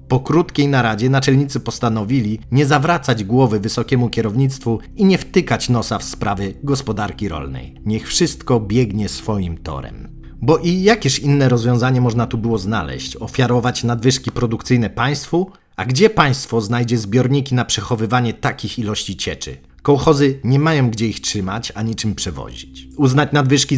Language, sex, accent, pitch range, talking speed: Polish, male, native, 110-135 Hz, 145 wpm